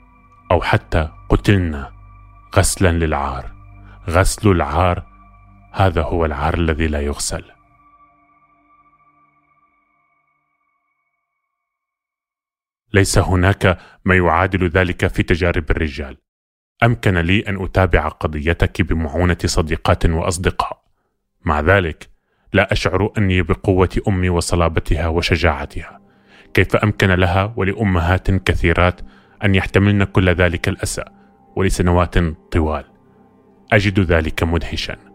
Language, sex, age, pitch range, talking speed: Arabic, male, 30-49, 85-100 Hz, 90 wpm